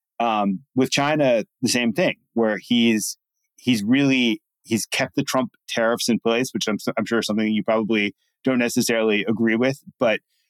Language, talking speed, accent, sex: English, 170 wpm, American, male